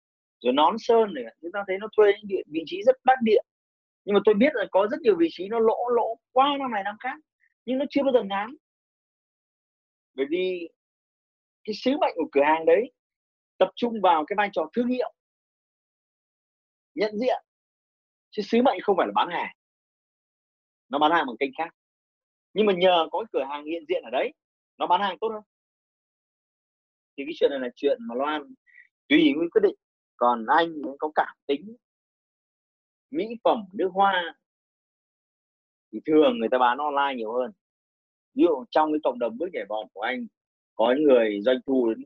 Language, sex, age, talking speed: Vietnamese, male, 30-49, 195 wpm